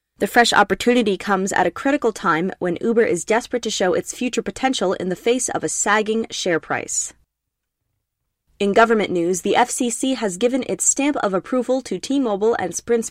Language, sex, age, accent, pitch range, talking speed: English, female, 20-39, American, 195-235 Hz, 185 wpm